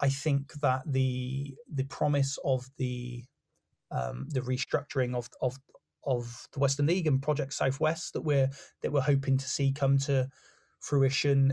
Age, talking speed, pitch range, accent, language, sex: 20-39, 155 wpm, 130-140 Hz, British, English, male